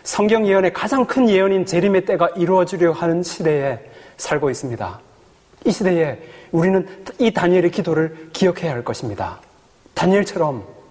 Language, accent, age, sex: Korean, native, 30-49, male